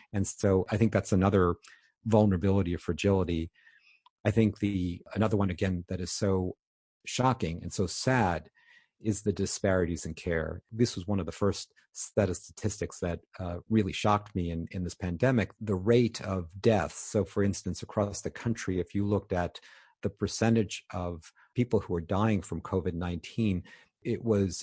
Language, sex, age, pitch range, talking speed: English, male, 50-69, 90-105 Hz, 170 wpm